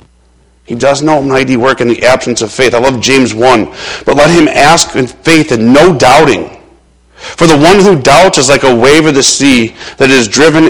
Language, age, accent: English, 50-69, American